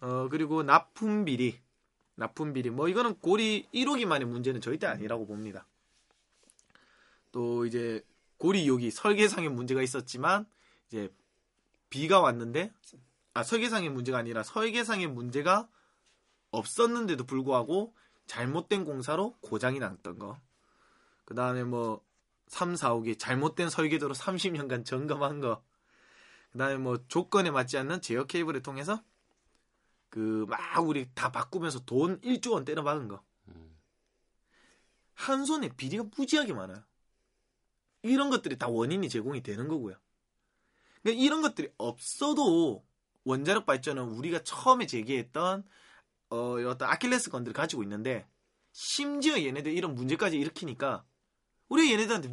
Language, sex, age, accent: Korean, male, 20-39, native